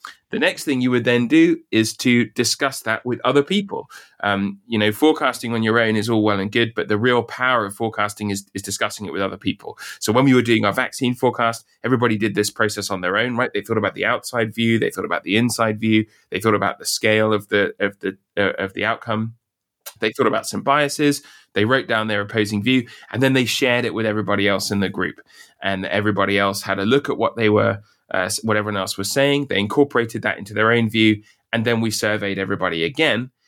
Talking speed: 235 wpm